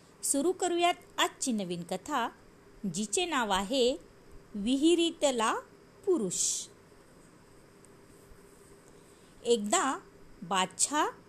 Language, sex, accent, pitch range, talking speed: Marathi, female, native, 210-310 Hz, 65 wpm